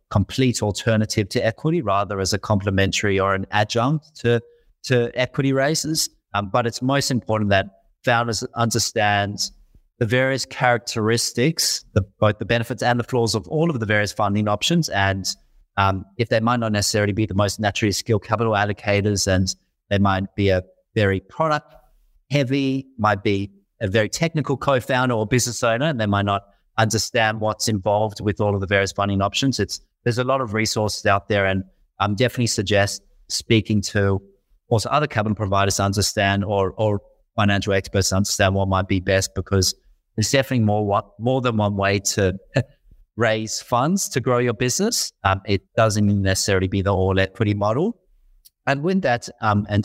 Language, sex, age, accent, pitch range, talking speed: English, male, 30-49, Australian, 100-120 Hz, 175 wpm